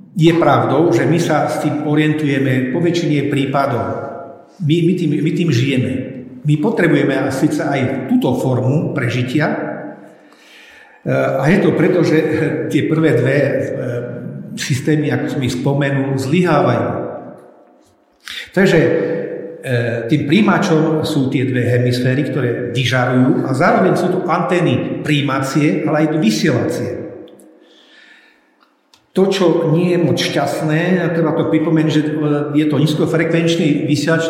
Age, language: 50-69, Slovak